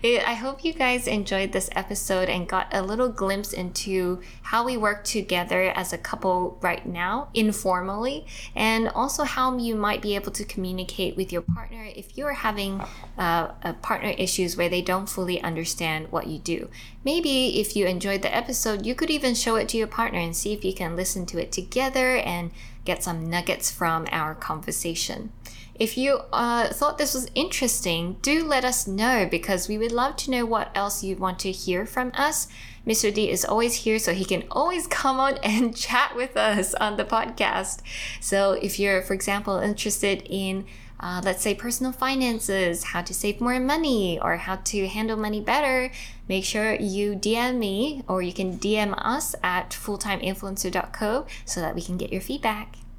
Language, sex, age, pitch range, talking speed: English, female, 10-29, 185-235 Hz, 185 wpm